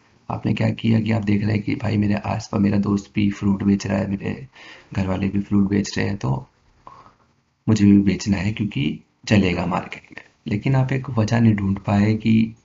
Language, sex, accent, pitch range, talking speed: Hindi, male, native, 100-110 Hz, 105 wpm